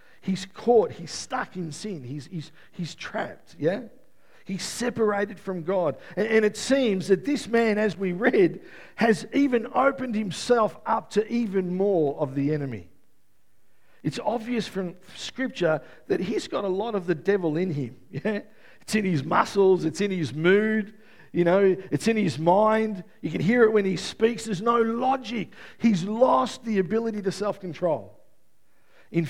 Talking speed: 170 wpm